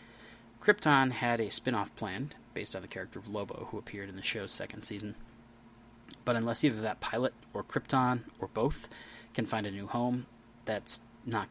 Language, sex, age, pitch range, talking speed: English, male, 20-39, 110-120 Hz, 175 wpm